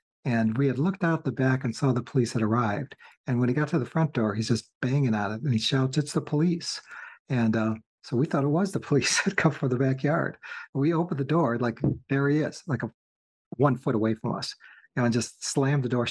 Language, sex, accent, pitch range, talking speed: English, male, American, 115-135 Hz, 240 wpm